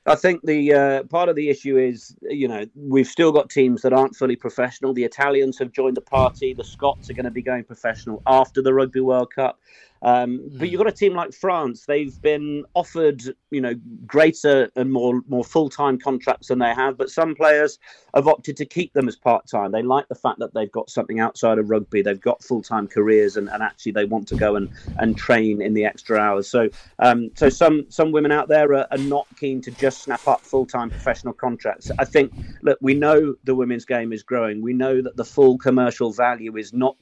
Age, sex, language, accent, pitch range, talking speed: 40-59, male, English, British, 110-135 Hz, 220 wpm